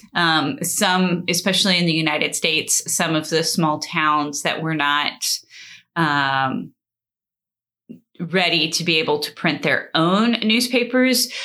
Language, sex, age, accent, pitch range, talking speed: English, female, 30-49, American, 160-205 Hz, 130 wpm